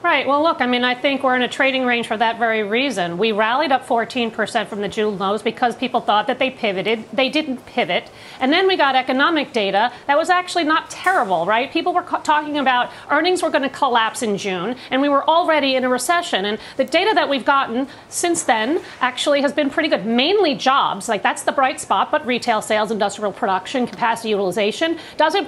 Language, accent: English, American